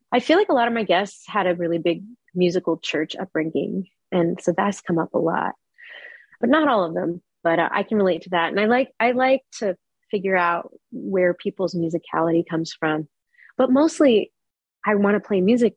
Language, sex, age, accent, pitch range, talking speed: English, female, 30-49, American, 170-210 Hz, 200 wpm